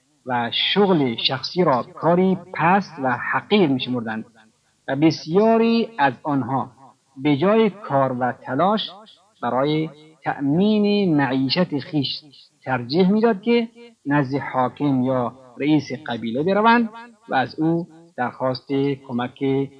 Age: 50-69